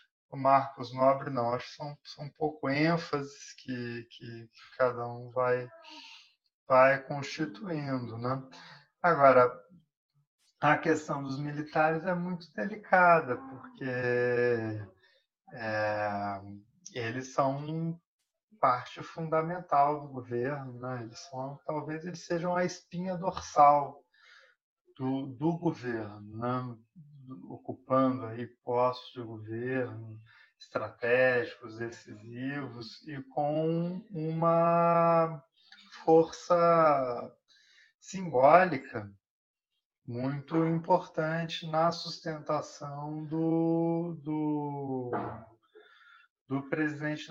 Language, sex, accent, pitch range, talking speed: Portuguese, male, Brazilian, 125-165 Hz, 85 wpm